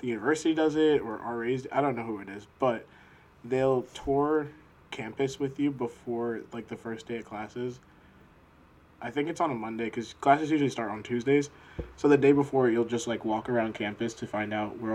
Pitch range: 110-130 Hz